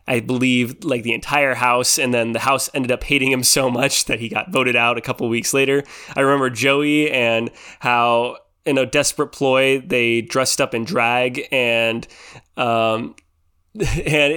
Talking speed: 175 wpm